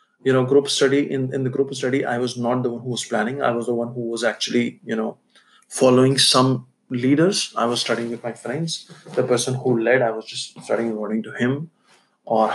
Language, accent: English, Indian